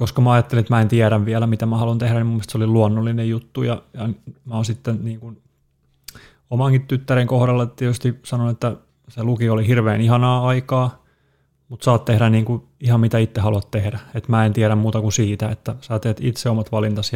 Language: Finnish